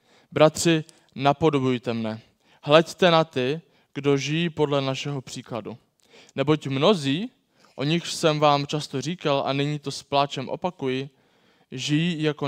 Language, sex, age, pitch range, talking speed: Czech, male, 20-39, 125-150 Hz, 130 wpm